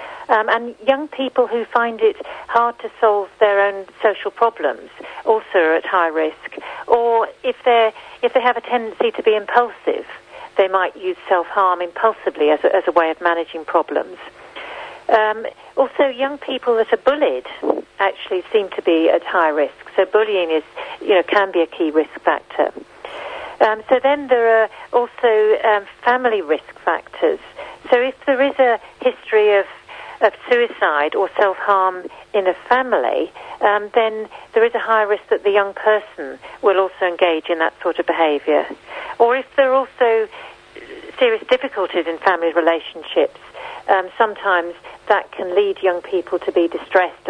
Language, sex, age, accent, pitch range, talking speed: English, female, 50-69, British, 185-260 Hz, 165 wpm